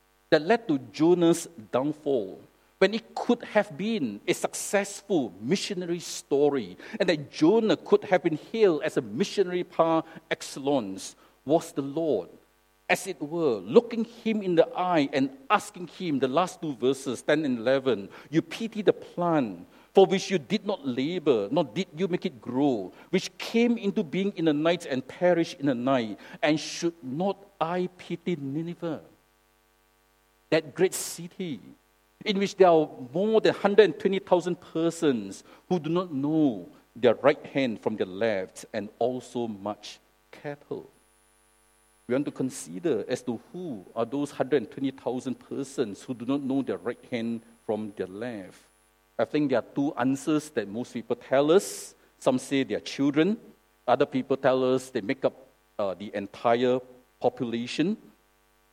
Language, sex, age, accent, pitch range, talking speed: English, male, 50-69, Malaysian, 130-190 Hz, 155 wpm